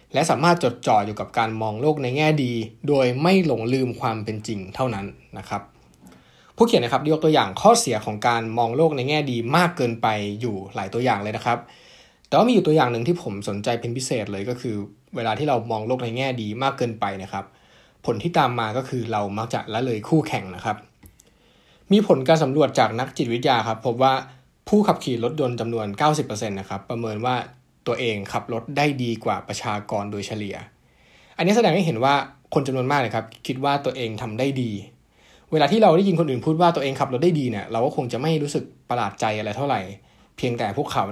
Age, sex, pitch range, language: 20-39, male, 110-145 Hz, Thai